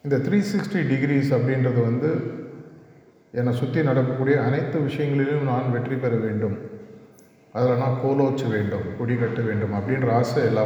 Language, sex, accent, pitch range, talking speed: Tamil, male, native, 115-140 Hz, 140 wpm